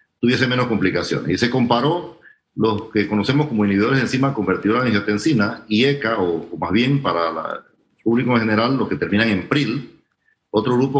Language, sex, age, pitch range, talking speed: Spanish, male, 40-59, 110-145 Hz, 180 wpm